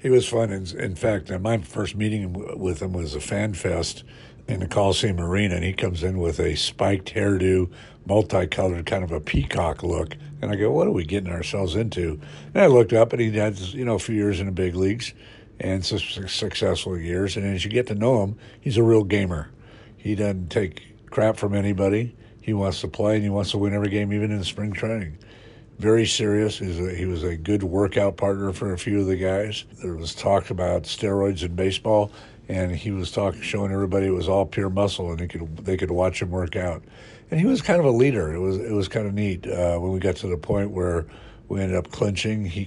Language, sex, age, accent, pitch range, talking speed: English, male, 50-69, American, 95-110 Hz, 230 wpm